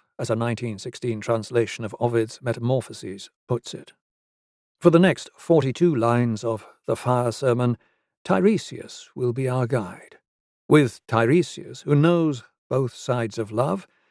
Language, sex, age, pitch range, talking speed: English, male, 60-79, 120-165 Hz, 130 wpm